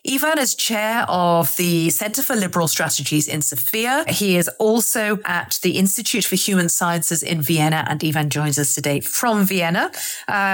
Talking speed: 170 wpm